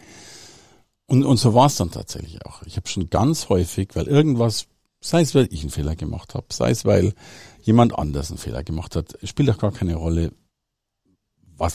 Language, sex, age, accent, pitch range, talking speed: German, male, 50-69, German, 85-120 Hz, 195 wpm